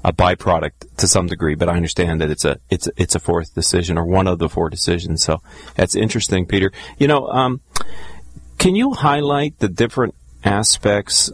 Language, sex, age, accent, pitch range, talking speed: English, male, 40-59, American, 90-100 Hz, 190 wpm